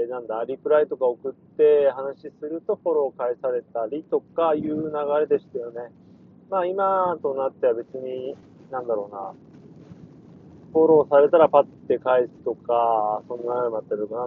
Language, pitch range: Japanese, 130-185 Hz